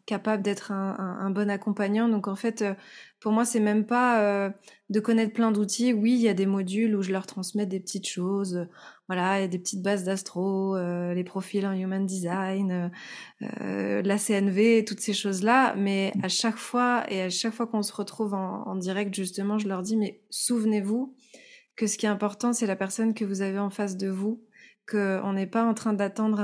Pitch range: 195-225 Hz